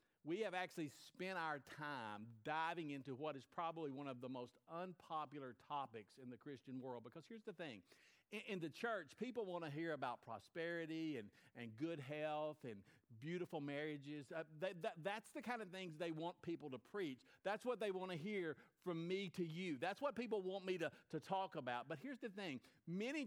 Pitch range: 150-195 Hz